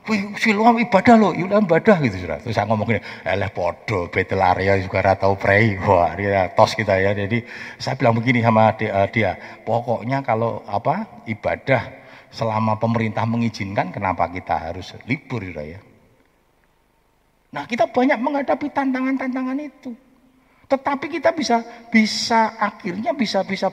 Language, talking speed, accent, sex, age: Indonesian, 105 wpm, native, male, 50-69